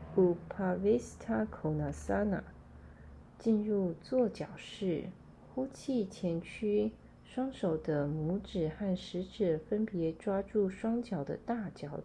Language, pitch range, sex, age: Chinese, 175-225 Hz, female, 30-49